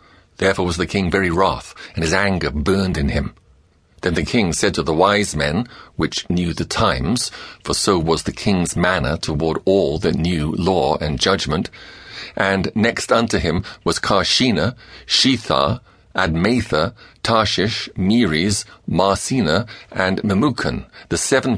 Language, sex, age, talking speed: English, male, 50-69, 145 wpm